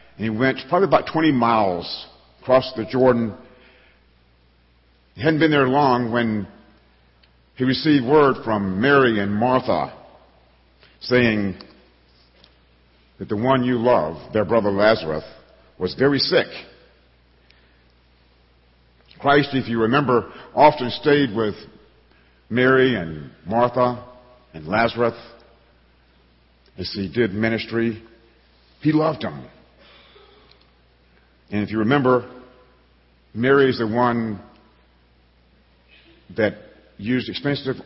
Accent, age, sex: American, 50-69, male